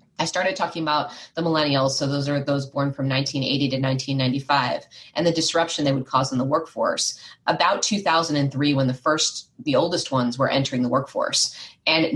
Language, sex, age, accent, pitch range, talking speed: English, female, 20-39, American, 140-185 Hz, 185 wpm